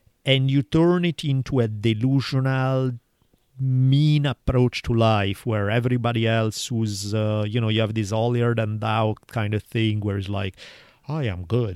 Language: English